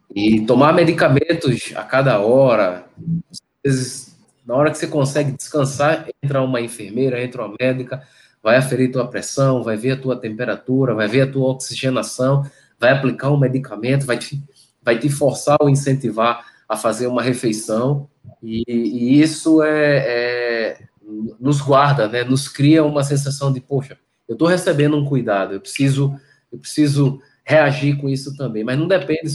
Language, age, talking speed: Portuguese, 20-39, 155 wpm